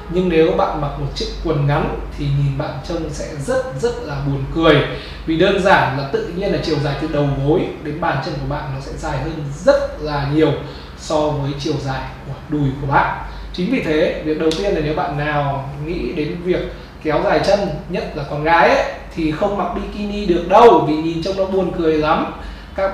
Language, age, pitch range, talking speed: Vietnamese, 20-39, 145-180 Hz, 220 wpm